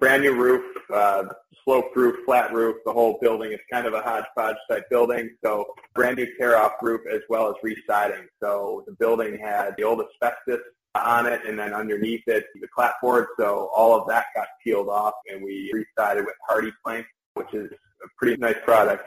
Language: English